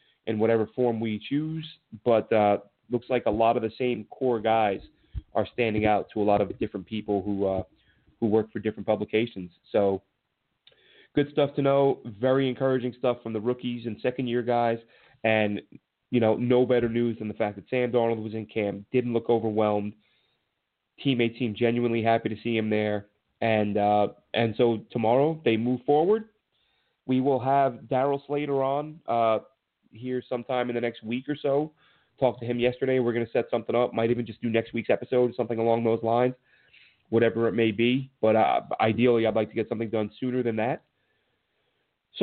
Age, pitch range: 30-49, 115-130 Hz